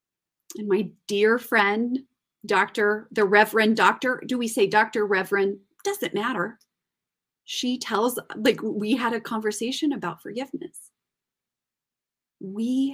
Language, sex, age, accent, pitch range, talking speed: English, female, 30-49, American, 200-280 Hz, 115 wpm